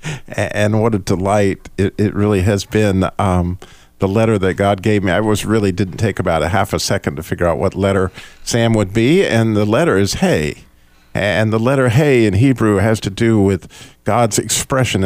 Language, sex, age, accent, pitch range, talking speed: English, male, 50-69, American, 95-120 Hz, 205 wpm